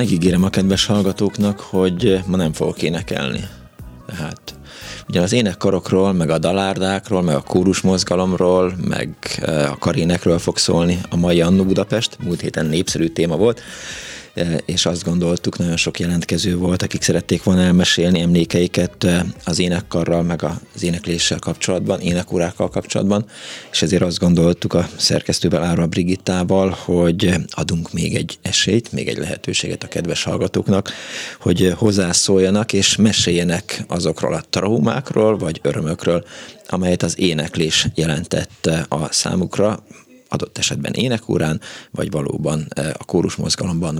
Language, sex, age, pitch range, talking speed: Hungarian, male, 20-39, 85-95 Hz, 125 wpm